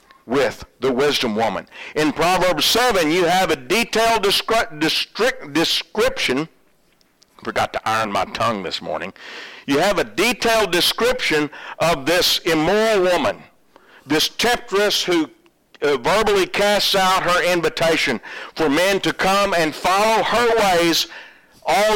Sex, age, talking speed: male, 50-69, 130 wpm